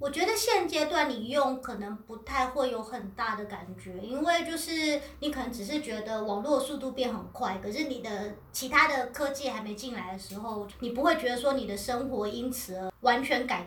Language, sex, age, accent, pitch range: Chinese, male, 30-49, American, 225-290 Hz